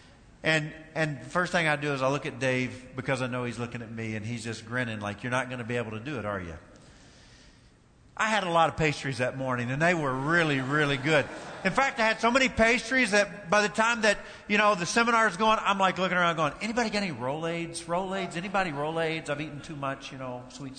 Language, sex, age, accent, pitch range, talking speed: English, male, 50-69, American, 120-160 Hz, 250 wpm